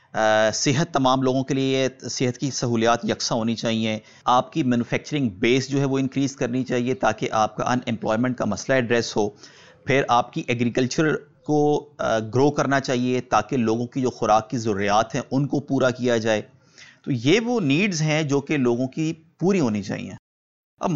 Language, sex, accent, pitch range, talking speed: English, male, Indian, 125-165 Hz, 185 wpm